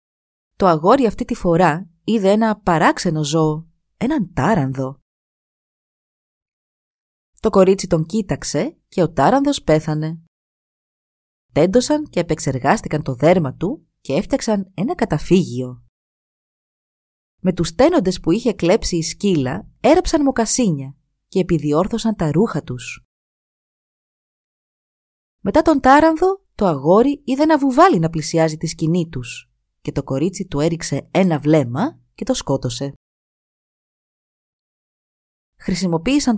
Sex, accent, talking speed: female, native, 110 wpm